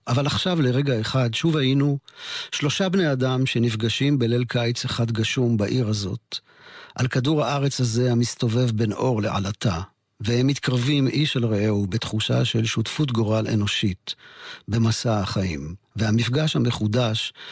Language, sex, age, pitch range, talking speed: Hebrew, male, 50-69, 105-135 Hz, 130 wpm